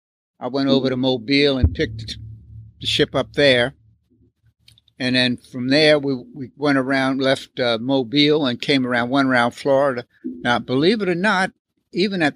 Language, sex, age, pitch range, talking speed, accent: English, male, 60-79, 120-140 Hz, 170 wpm, American